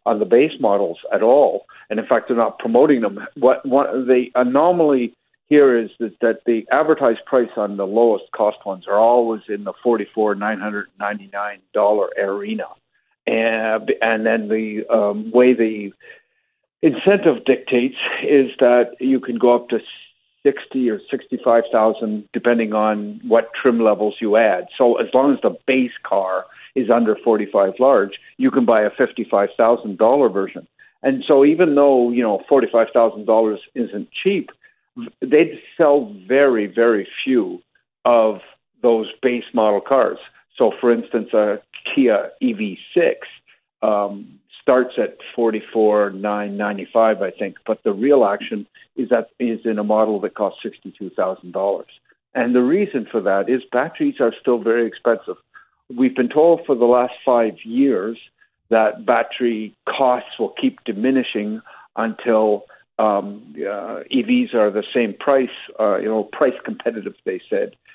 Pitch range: 110-140 Hz